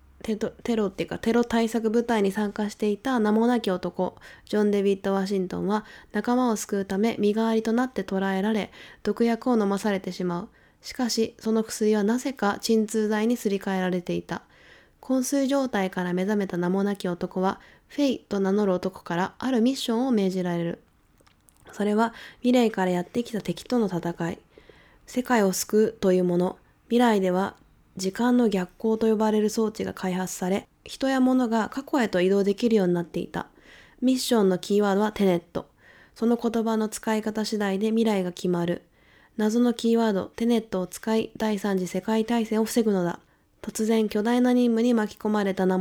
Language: Japanese